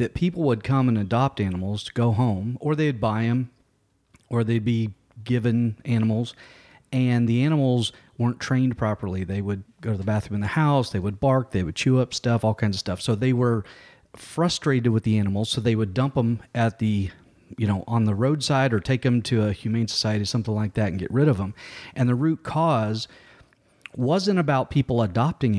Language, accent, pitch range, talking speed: English, American, 110-140 Hz, 205 wpm